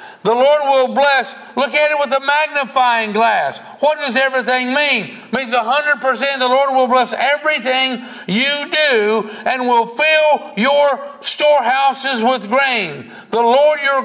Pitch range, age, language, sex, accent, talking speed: 190-265 Hz, 60-79, English, male, American, 150 wpm